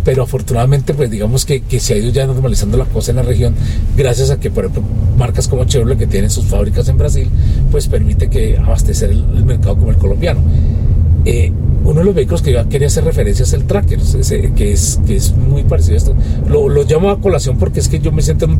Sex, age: male, 40-59